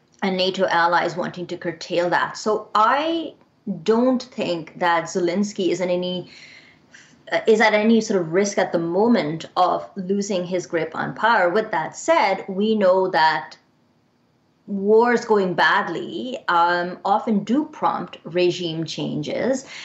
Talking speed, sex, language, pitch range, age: 135 wpm, female, English, 175-220 Hz, 20-39